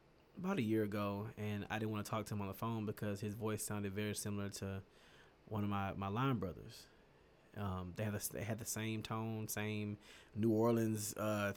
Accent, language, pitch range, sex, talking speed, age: American, English, 100-115 Hz, male, 215 wpm, 20-39